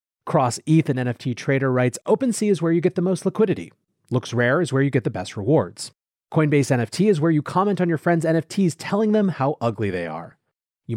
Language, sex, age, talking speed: English, male, 30-49, 220 wpm